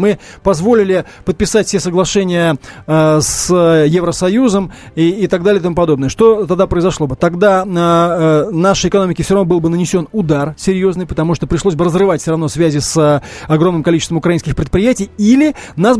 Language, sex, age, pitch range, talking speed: Russian, male, 20-39, 170-210 Hz, 175 wpm